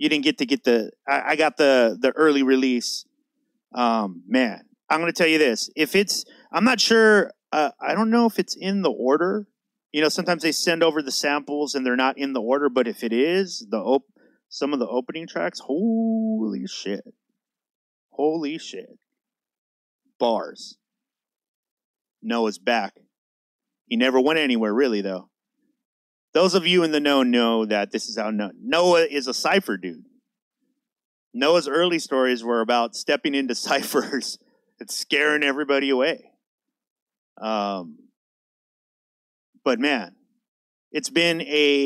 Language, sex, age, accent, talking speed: English, male, 30-49, American, 155 wpm